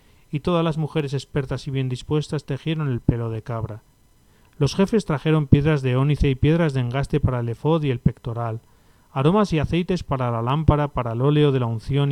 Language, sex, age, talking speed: Spanish, male, 40-59, 205 wpm